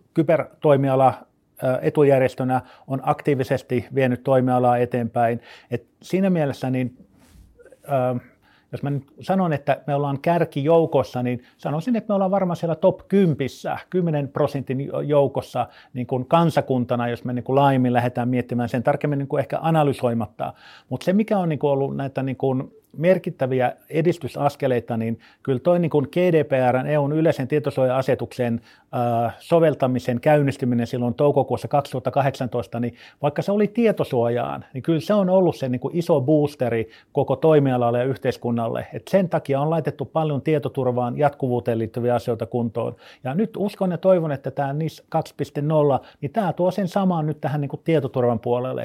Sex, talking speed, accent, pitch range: male, 145 wpm, native, 125-160 Hz